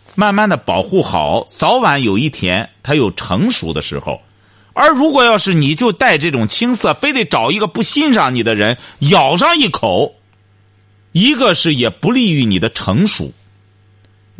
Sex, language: male, Chinese